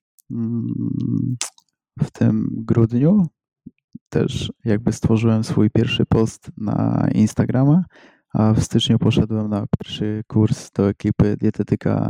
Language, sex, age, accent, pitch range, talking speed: Polish, male, 20-39, native, 105-125 Hz, 105 wpm